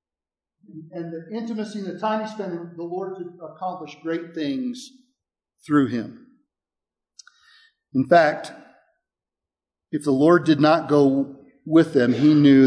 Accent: American